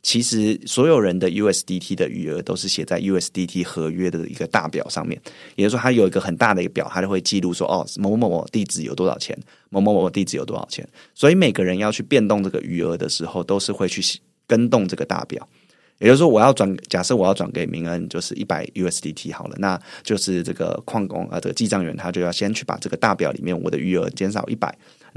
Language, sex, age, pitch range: Chinese, male, 20-39, 90-105 Hz